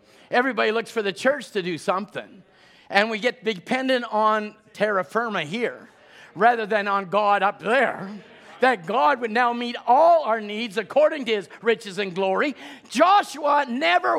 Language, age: English, 50-69